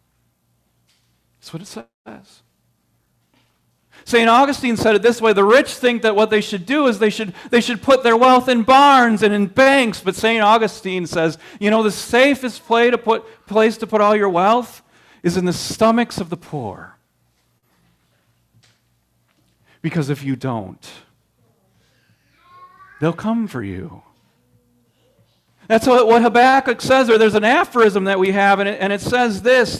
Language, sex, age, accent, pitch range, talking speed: English, male, 40-59, American, 155-235 Hz, 165 wpm